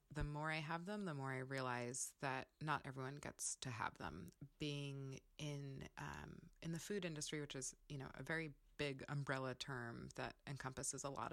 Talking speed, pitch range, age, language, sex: 190 wpm, 135-160 Hz, 20-39, English, female